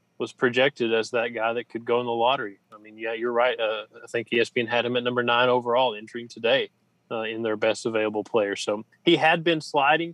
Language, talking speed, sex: English, 230 wpm, male